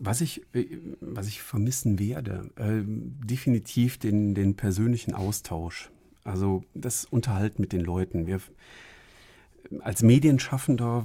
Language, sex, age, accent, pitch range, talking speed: German, male, 40-59, German, 95-110 Hz, 105 wpm